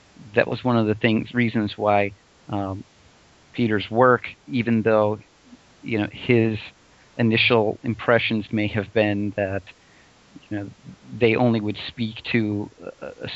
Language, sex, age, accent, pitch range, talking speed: English, male, 40-59, American, 100-115 Hz, 135 wpm